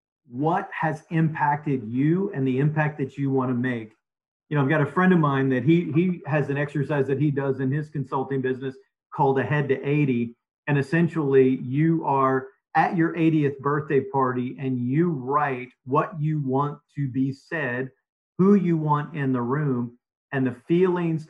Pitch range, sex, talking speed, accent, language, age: 130-155 Hz, male, 180 wpm, American, English, 40-59